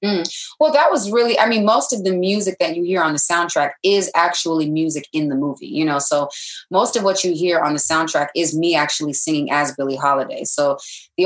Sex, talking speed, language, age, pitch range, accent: female, 230 wpm, English, 20-39, 140-170 Hz, American